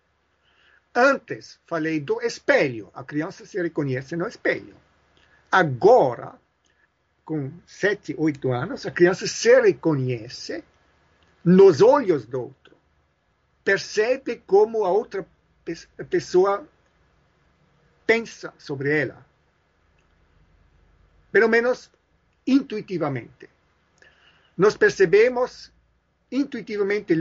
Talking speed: 80 wpm